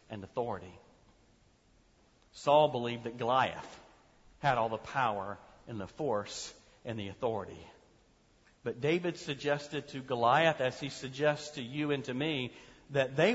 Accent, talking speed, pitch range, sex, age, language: American, 140 wpm, 145-215 Hz, male, 40-59, English